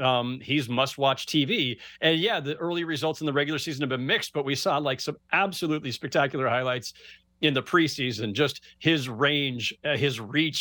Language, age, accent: English, 40-59, American